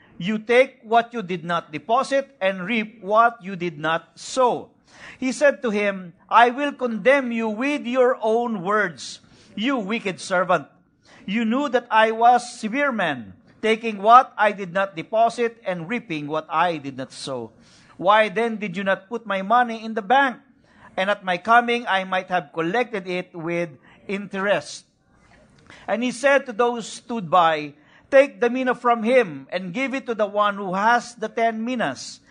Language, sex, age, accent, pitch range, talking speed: English, male, 50-69, Filipino, 185-240 Hz, 175 wpm